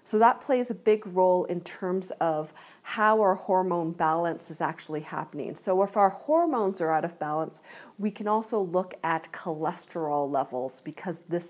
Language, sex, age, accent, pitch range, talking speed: English, female, 40-59, American, 175-230 Hz, 170 wpm